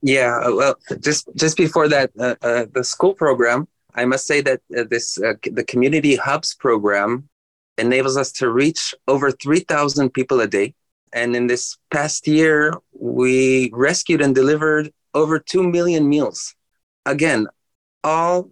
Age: 30-49